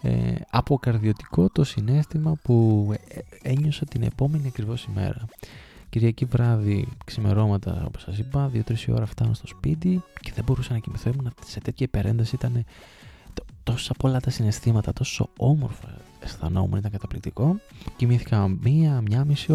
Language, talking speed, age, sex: Greek, 125 wpm, 20-39, male